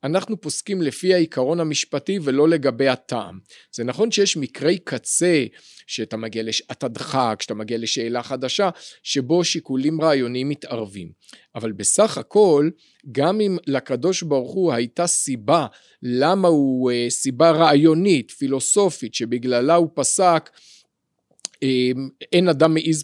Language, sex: Hebrew, male